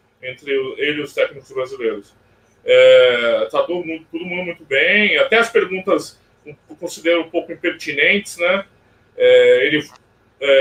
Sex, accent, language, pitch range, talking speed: male, Brazilian, Portuguese, 150-250 Hz, 130 wpm